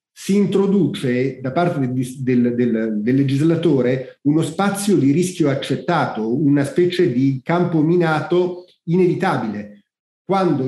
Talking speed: 105 wpm